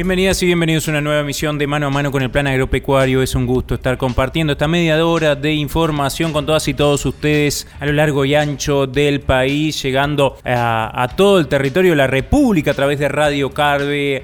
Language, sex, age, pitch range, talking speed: Spanish, male, 20-39, 130-150 Hz, 210 wpm